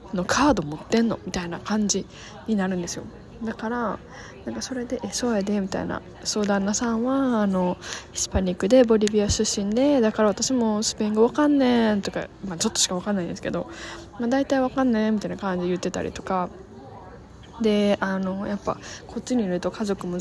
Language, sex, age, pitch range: Japanese, female, 10-29, 185-235 Hz